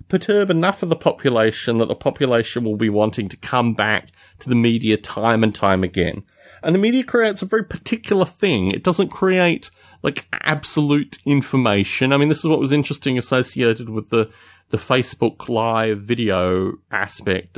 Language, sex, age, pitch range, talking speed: English, male, 30-49, 110-175 Hz, 170 wpm